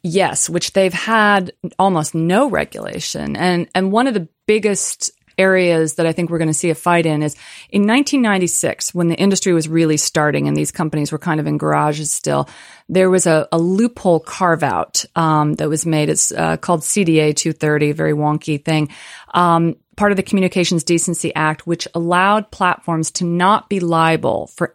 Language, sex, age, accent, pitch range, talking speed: English, female, 30-49, American, 155-185 Hz, 185 wpm